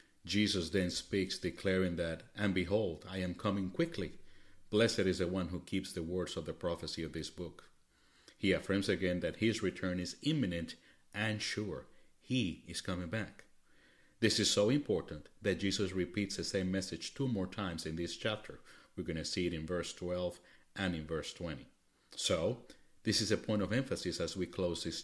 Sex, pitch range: male, 80-95 Hz